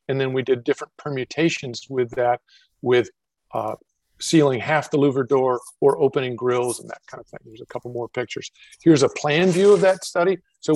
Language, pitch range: English, 125-155 Hz